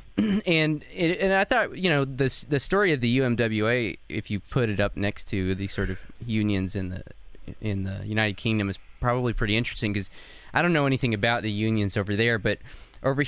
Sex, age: male, 20-39